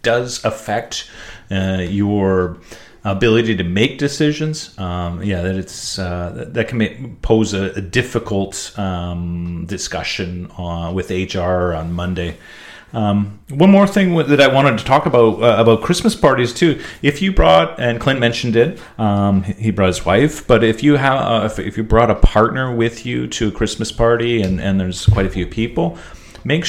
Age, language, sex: 30-49, English, male